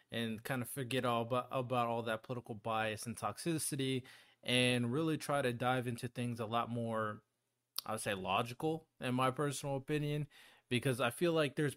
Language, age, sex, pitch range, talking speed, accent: English, 20-39, male, 120-150 Hz, 185 wpm, American